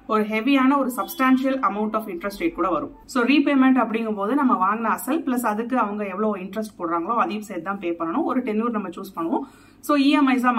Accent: native